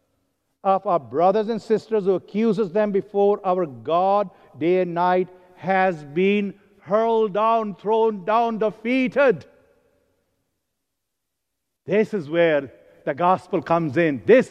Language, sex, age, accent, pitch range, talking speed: English, male, 60-79, Indian, 160-220 Hz, 120 wpm